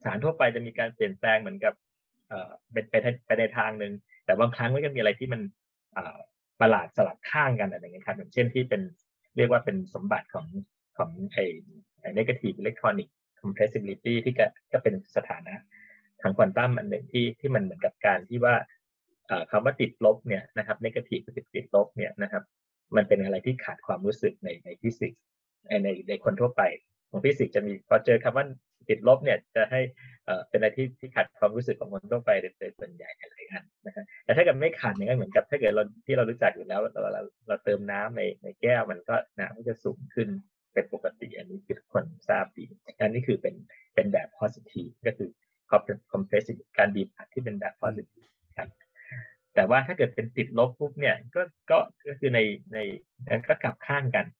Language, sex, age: Thai, male, 20-39